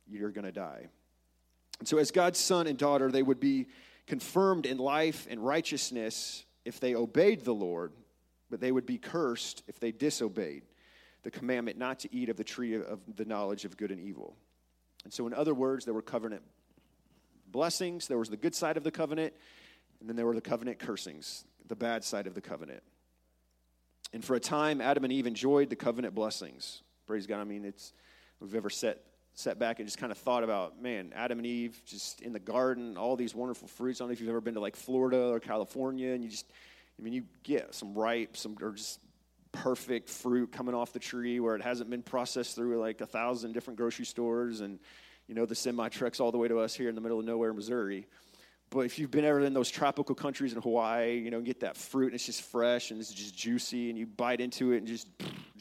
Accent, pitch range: American, 110-130 Hz